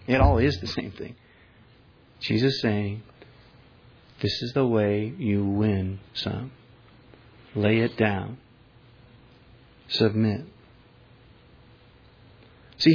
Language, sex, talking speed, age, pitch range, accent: English, male, 95 wpm, 50-69, 110-125 Hz, American